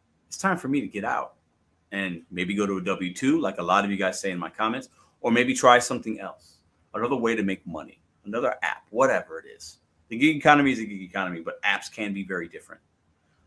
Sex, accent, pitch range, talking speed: male, American, 95-145 Hz, 225 wpm